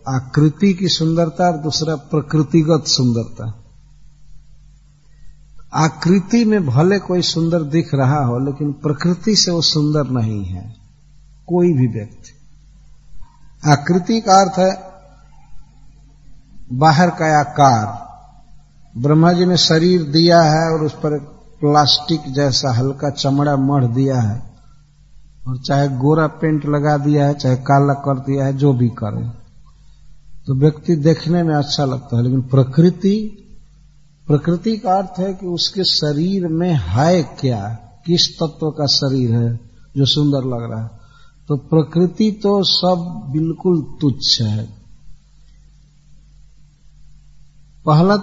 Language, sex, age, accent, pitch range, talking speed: English, male, 50-69, Indian, 135-165 Hz, 120 wpm